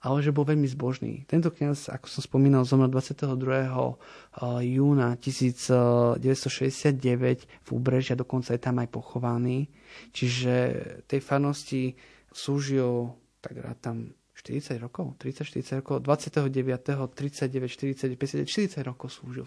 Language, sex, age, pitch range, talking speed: Slovak, male, 30-49, 125-140 Hz, 125 wpm